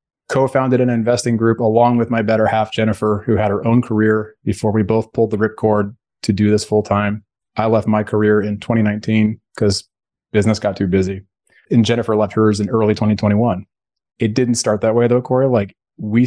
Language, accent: English, American